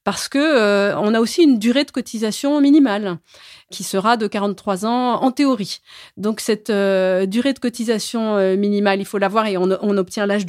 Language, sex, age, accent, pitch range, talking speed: French, female, 30-49, French, 205-260 Hz, 195 wpm